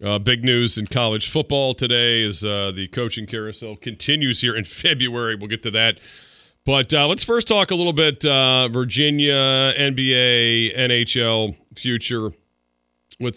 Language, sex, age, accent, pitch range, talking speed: English, male, 40-59, American, 105-125 Hz, 155 wpm